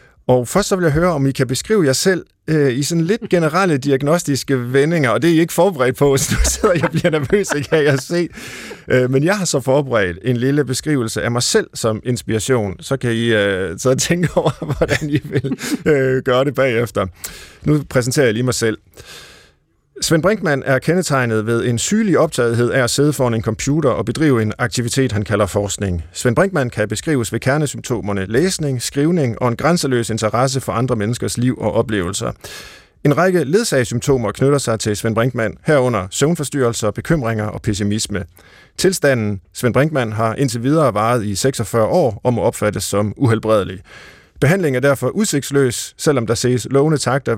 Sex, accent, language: male, native, Danish